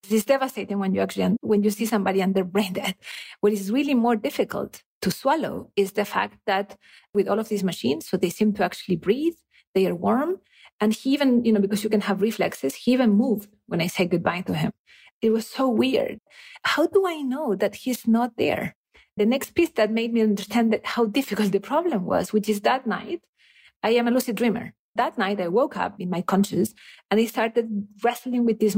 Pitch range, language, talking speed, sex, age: 205-265 Hz, English, 220 wpm, female, 40-59